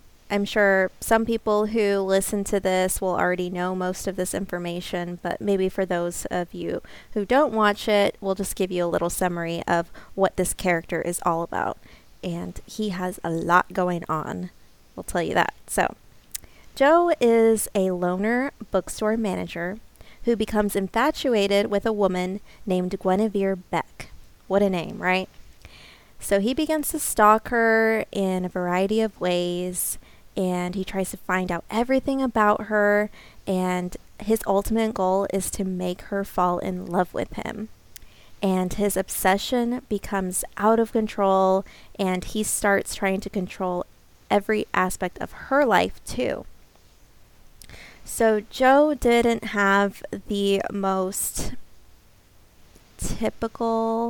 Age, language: 20-39, English